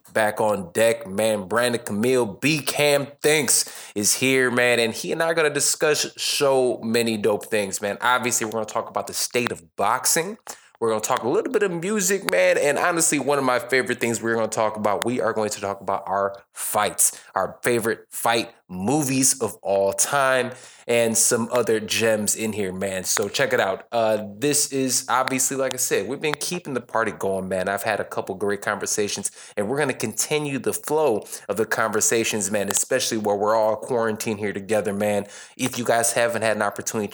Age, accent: 20-39, American